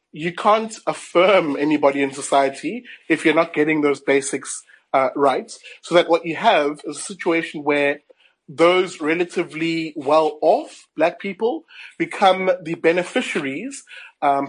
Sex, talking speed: male, 135 wpm